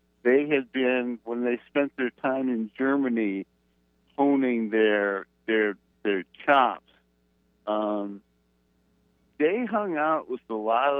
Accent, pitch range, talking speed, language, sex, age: American, 90-130 Hz, 120 wpm, English, male, 60-79